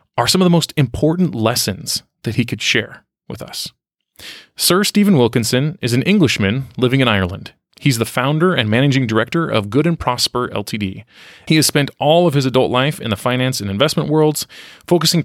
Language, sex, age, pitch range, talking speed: English, male, 30-49, 115-155 Hz, 190 wpm